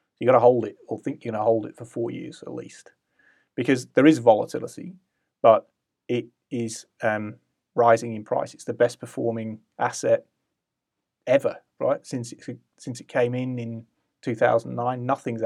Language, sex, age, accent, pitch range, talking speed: English, male, 30-49, British, 110-125 Hz, 165 wpm